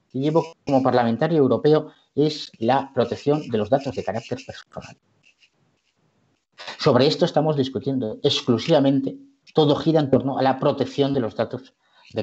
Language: Spanish